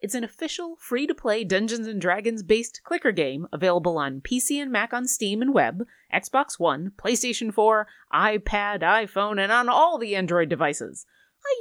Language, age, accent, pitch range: English, 30-49, American, 180-265 Hz